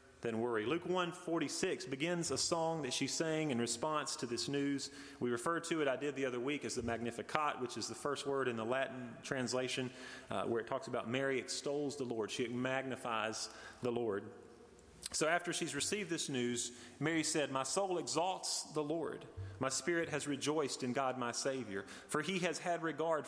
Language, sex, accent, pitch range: English, male, American, 120-160 Hz